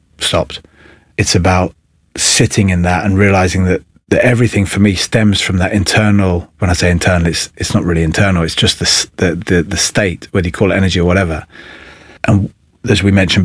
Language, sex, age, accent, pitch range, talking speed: English, male, 30-49, British, 85-105 Hz, 195 wpm